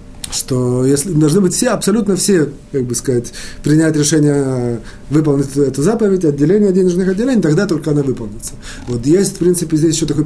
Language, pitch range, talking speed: Russian, 135-180 Hz, 170 wpm